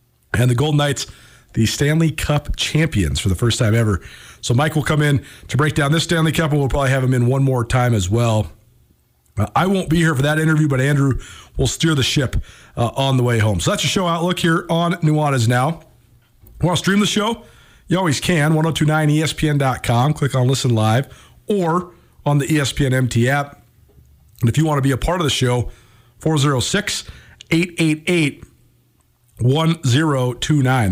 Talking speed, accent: 185 wpm, American